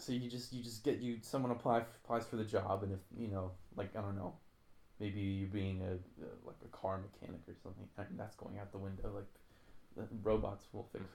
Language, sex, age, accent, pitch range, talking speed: English, male, 20-39, American, 95-115 Hz, 235 wpm